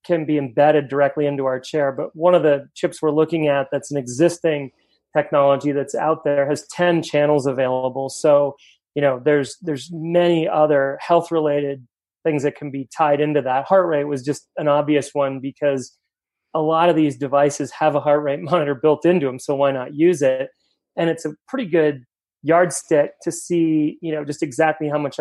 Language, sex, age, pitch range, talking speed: English, male, 30-49, 140-160 Hz, 195 wpm